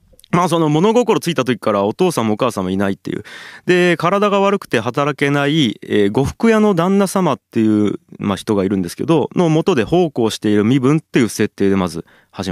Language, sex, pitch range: Japanese, male, 105-170 Hz